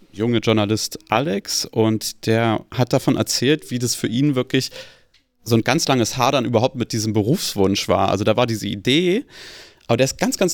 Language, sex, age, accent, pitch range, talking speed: German, male, 30-49, German, 115-160 Hz, 190 wpm